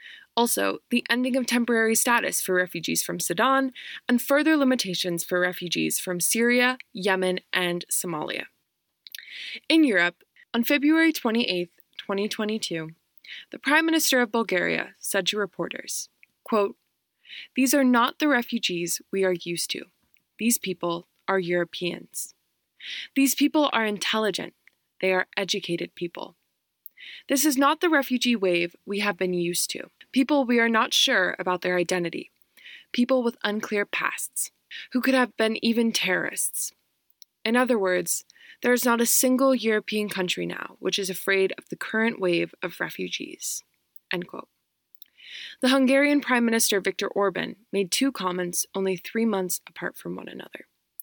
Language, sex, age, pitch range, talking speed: English, female, 20-39, 185-250 Hz, 145 wpm